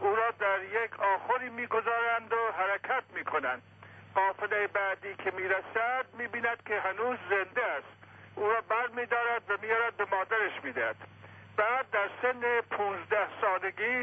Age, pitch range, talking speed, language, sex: 60-79, 190-235 Hz, 135 wpm, Persian, male